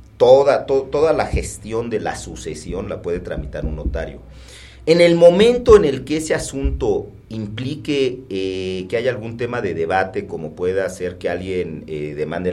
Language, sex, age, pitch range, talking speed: Spanish, male, 40-59, 85-115 Hz, 170 wpm